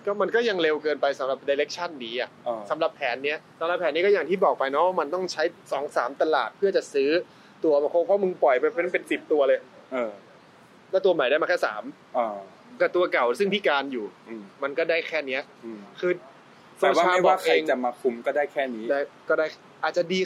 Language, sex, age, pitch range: Thai, male, 20-39, 140-205 Hz